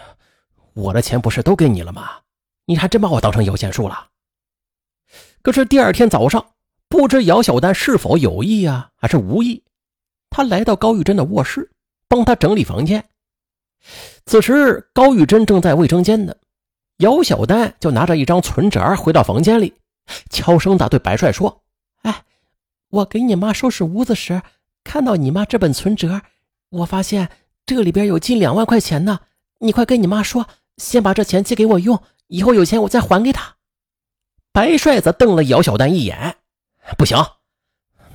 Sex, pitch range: male, 165-230 Hz